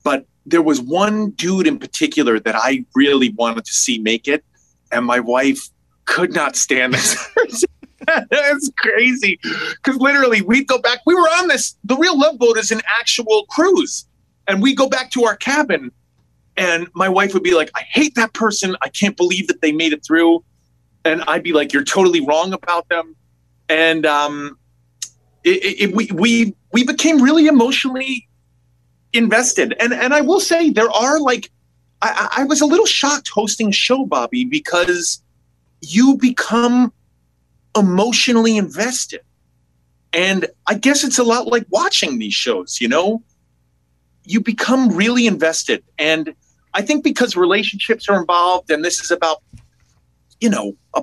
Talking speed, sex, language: 165 wpm, male, English